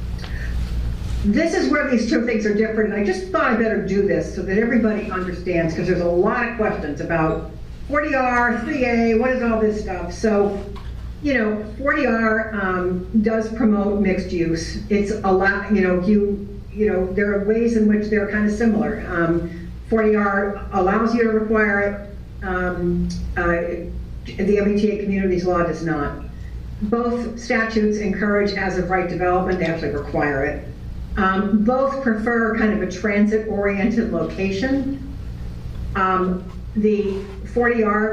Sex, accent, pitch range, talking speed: female, American, 180-220 Hz, 150 wpm